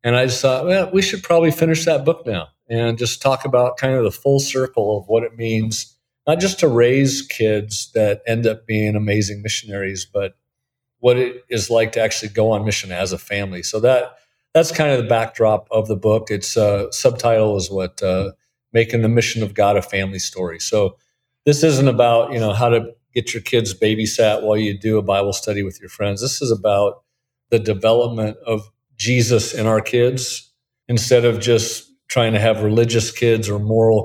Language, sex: English, male